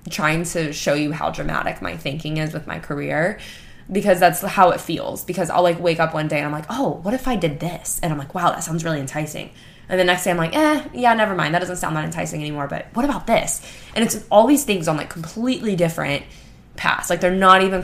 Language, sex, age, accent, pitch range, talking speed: English, female, 10-29, American, 150-180 Hz, 250 wpm